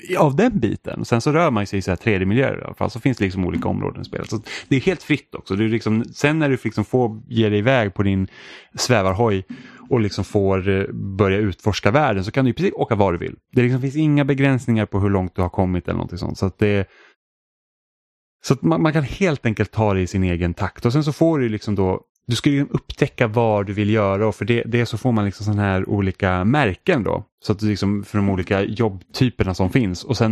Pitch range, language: 95-120 Hz, Swedish